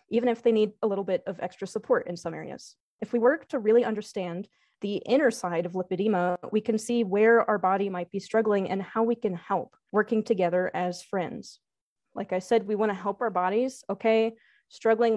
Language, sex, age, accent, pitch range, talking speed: English, female, 20-39, American, 185-230 Hz, 205 wpm